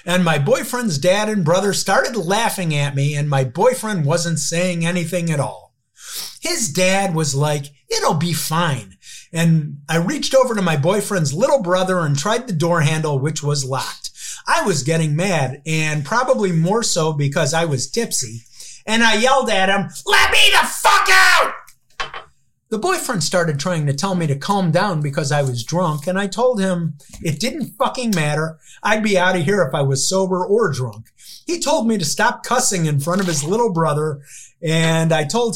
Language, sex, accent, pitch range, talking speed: English, male, American, 150-205 Hz, 190 wpm